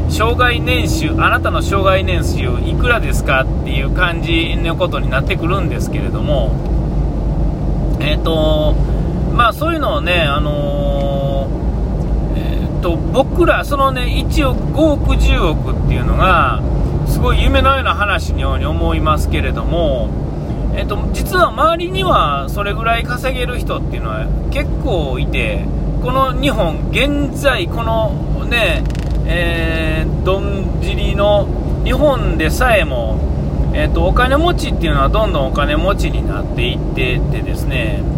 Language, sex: Japanese, male